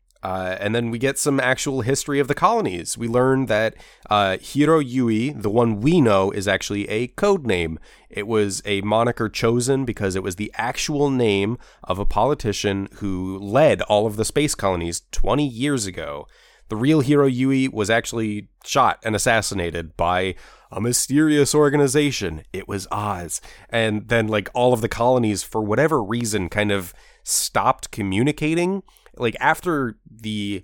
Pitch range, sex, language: 100-130 Hz, male, English